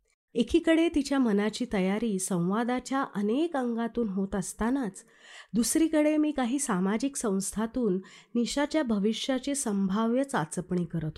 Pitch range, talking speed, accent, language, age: 190-265 Hz, 100 wpm, native, Marathi, 30-49